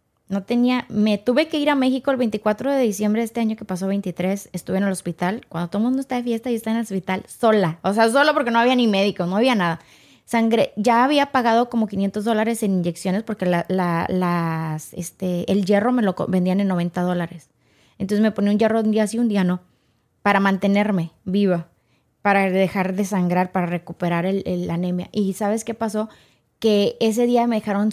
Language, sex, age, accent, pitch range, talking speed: Spanish, female, 20-39, Mexican, 190-260 Hz, 215 wpm